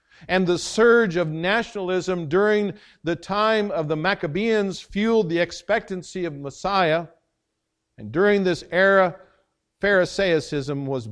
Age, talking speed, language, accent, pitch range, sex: 60-79, 120 wpm, English, American, 160-205 Hz, male